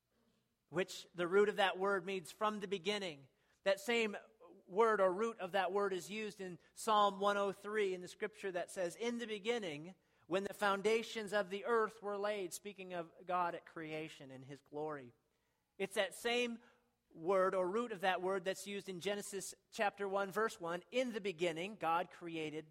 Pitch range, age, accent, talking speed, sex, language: 145-210 Hz, 40-59, American, 180 wpm, male, English